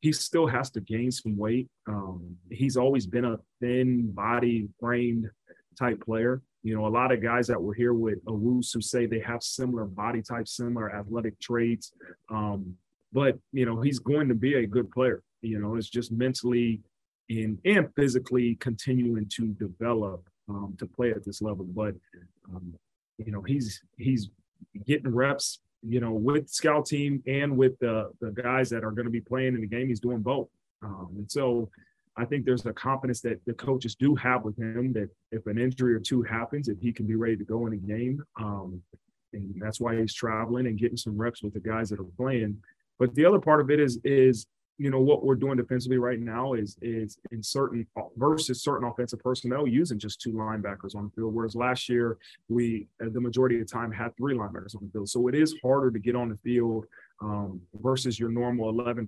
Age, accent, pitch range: 30-49, American, 110-125 Hz